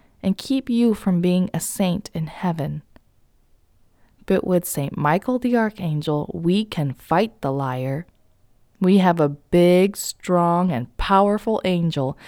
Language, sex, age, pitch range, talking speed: English, female, 20-39, 155-225 Hz, 135 wpm